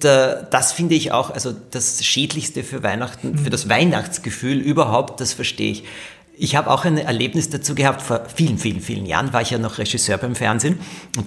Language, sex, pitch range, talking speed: German, male, 115-160 Hz, 195 wpm